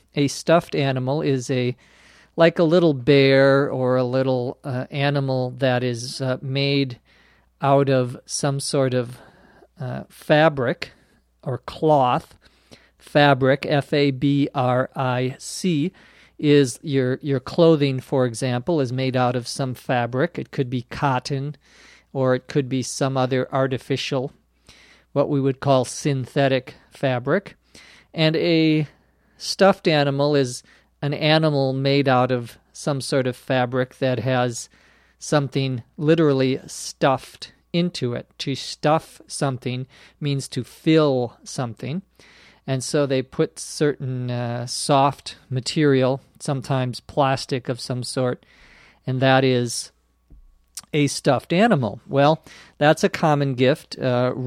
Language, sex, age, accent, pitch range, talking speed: Portuguese, male, 50-69, American, 125-145 Hz, 120 wpm